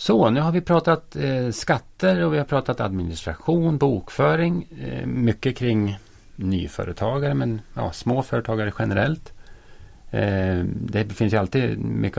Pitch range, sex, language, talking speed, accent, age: 95-120 Hz, male, Swedish, 135 wpm, Norwegian, 30-49